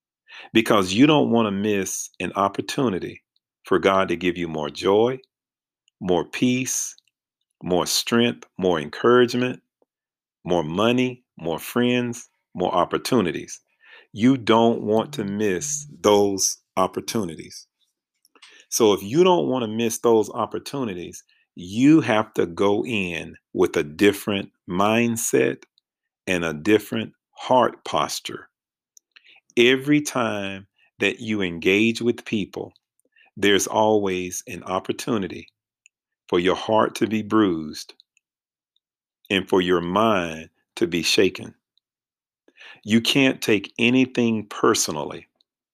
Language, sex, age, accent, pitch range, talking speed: English, male, 40-59, American, 95-125 Hz, 115 wpm